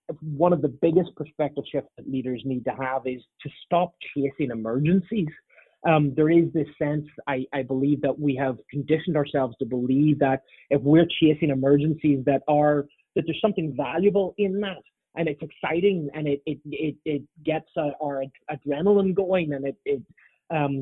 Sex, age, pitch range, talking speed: male, 30-49, 140-165 Hz, 175 wpm